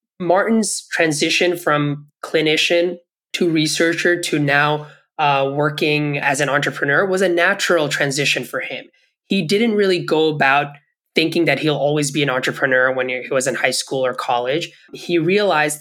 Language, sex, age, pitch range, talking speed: English, male, 20-39, 140-170 Hz, 155 wpm